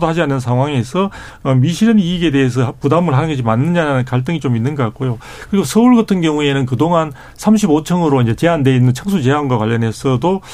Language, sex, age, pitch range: Korean, male, 40-59, 135-195 Hz